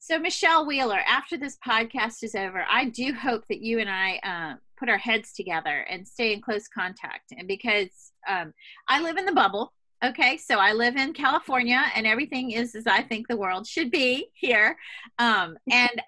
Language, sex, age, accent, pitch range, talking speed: English, female, 30-49, American, 200-265 Hz, 195 wpm